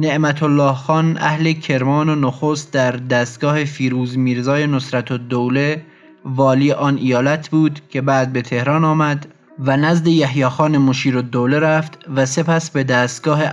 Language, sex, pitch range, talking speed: Persian, male, 130-155 Hz, 145 wpm